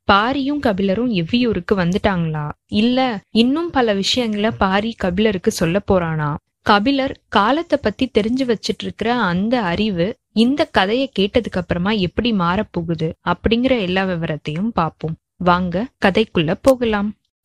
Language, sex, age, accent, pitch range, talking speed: Tamil, female, 20-39, native, 185-245 Hz, 115 wpm